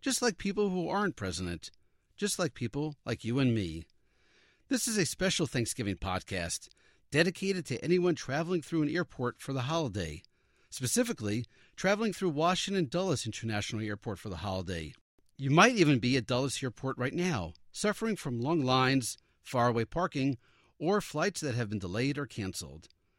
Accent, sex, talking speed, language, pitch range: American, male, 160 wpm, English, 110-175 Hz